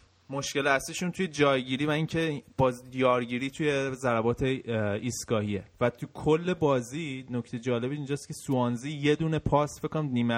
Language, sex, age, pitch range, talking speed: Persian, male, 20-39, 115-140 Hz, 140 wpm